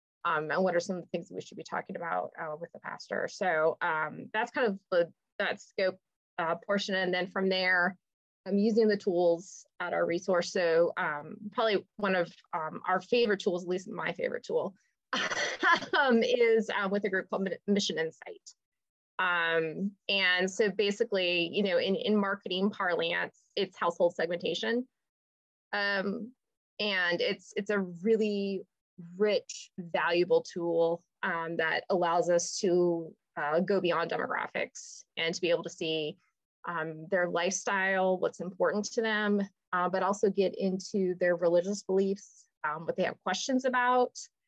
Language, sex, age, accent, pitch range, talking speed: English, female, 20-39, American, 175-210 Hz, 160 wpm